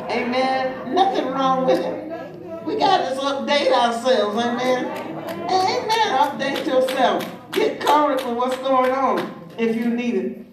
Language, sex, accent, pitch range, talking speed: English, male, American, 195-255 Hz, 130 wpm